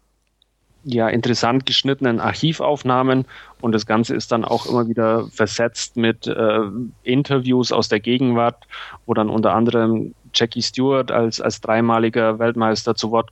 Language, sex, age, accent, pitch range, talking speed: German, male, 30-49, German, 110-120 Hz, 140 wpm